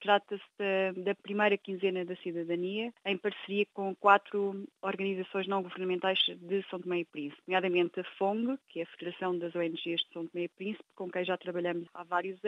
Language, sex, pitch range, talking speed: Portuguese, female, 185-215 Hz, 185 wpm